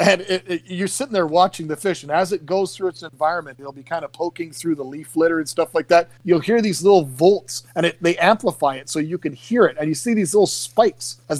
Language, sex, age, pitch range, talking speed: English, male, 40-59, 140-175 Hz, 270 wpm